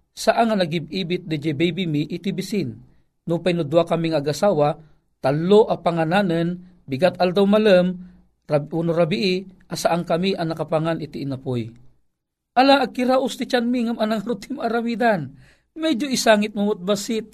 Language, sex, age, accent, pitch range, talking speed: Filipino, male, 50-69, native, 165-235 Hz, 120 wpm